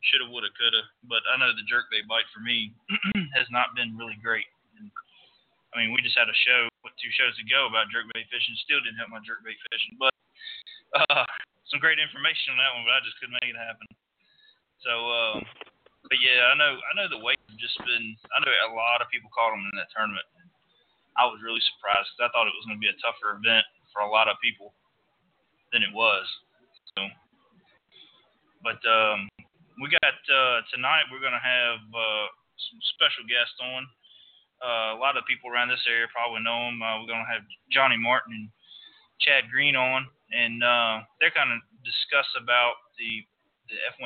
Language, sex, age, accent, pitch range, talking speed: English, male, 20-39, American, 110-125 Hz, 200 wpm